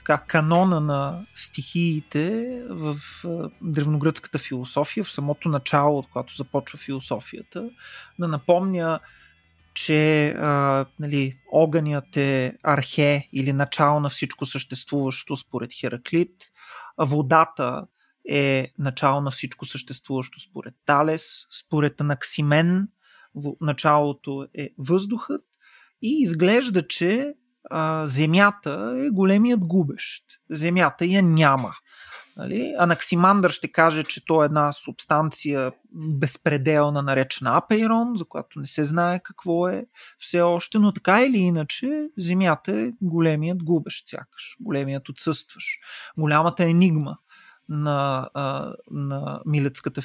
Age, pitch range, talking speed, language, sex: 30-49, 140-180 Hz, 105 wpm, Bulgarian, male